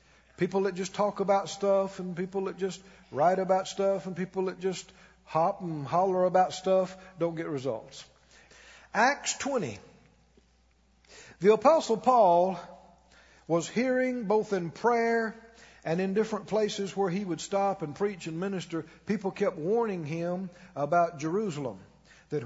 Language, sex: English, male